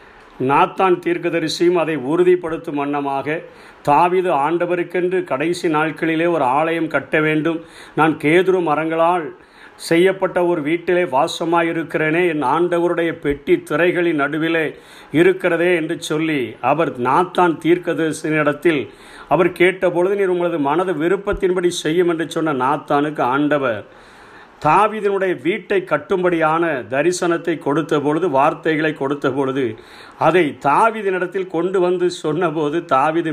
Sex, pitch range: male, 155-180 Hz